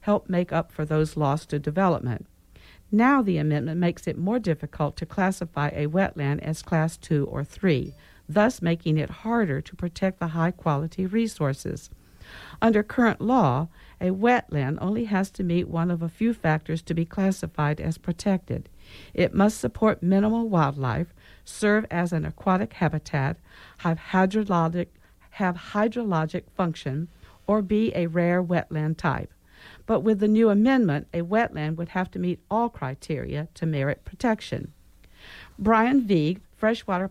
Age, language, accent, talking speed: 60-79, English, American, 150 wpm